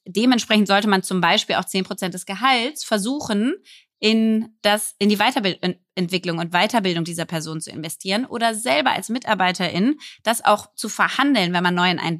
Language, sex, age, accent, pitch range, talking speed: German, female, 20-39, German, 180-230 Hz, 165 wpm